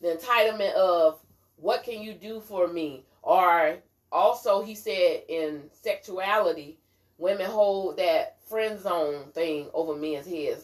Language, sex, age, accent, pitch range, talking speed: English, female, 30-49, American, 160-220 Hz, 135 wpm